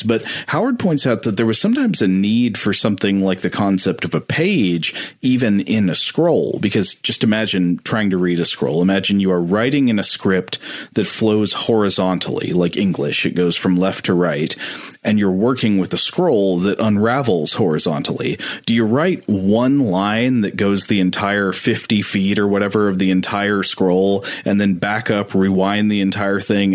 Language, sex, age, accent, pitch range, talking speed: English, male, 30-49, American, 95-110 Hz, 185 wpm